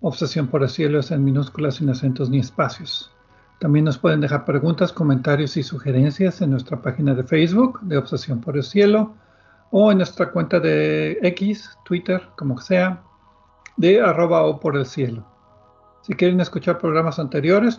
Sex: male